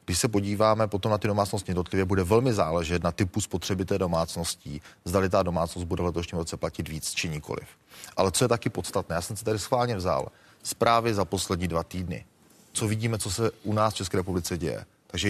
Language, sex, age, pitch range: Czech, male, 30-49, 90-105 Hz